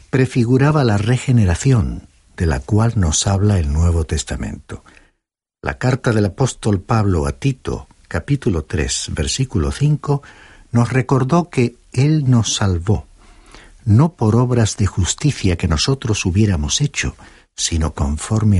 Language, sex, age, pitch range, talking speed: Spanish, male, 60-79, 90-125 Hz, 125 wpm